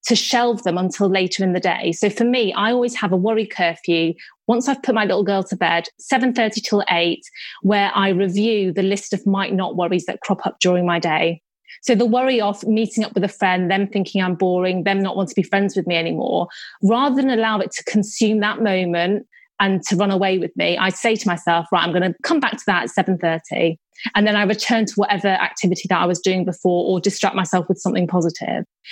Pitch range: 185-235 Hz